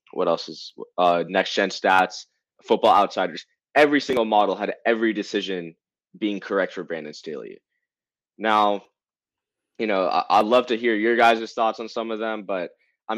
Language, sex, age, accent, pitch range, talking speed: English, male, 20-39, American, 115-150 Hz, 165 wpm